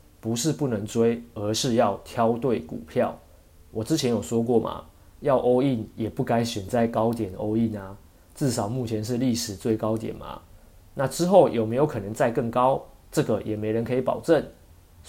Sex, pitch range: male, 105-125 Hz